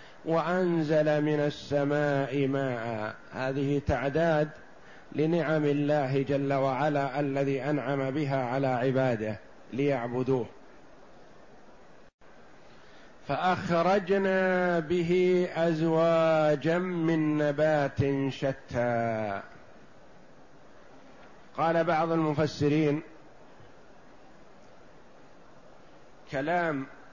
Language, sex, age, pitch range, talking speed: Arabic, male, 50-69, 140-165 Hz, 60 wpm